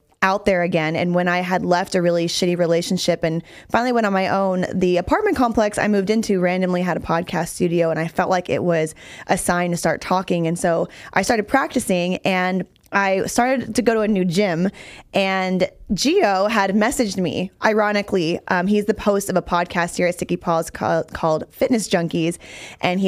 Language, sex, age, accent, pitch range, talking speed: English, female, 20-39, American, 175-215 Hz, 200 wpm